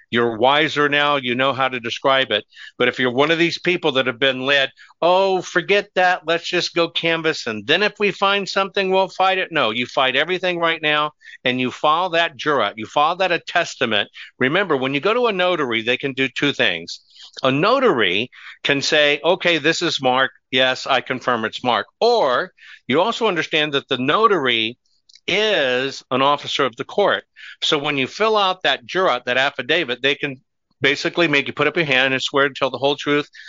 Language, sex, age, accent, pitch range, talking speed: English, male, 50-69, American, 130-170 Hz, 205 wpm